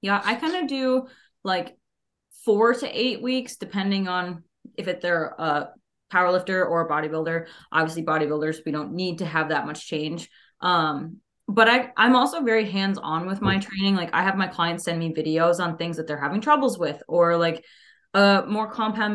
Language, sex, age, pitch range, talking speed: English, female, 20-39, 165-215 Hz, 190 wpm